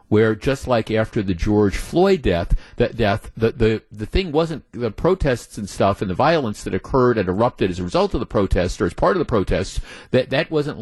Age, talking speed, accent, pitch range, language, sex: 50-69, 220 wpm, American, 105-135 Hz, English, male